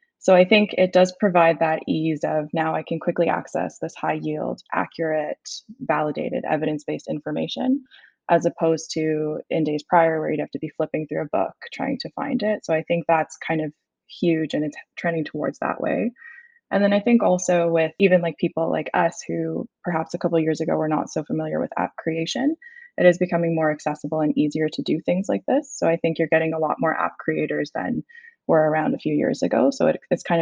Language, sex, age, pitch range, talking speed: English, female, 20-39, 155-180 Hz, 220 wpm